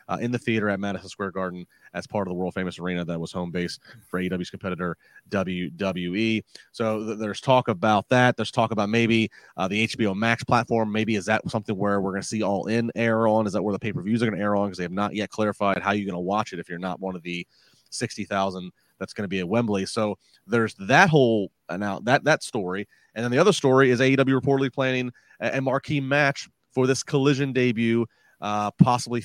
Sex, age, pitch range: male, 30-49, 95-120 Hz